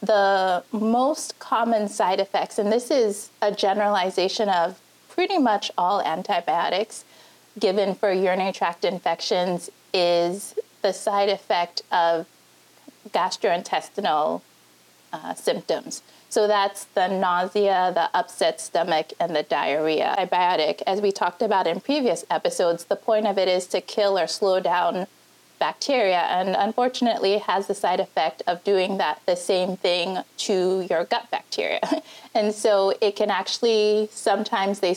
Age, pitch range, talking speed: 30-49, 180-220 Hz, 140 wpm